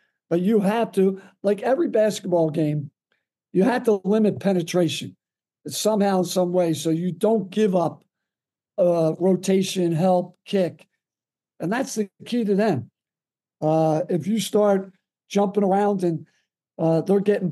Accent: American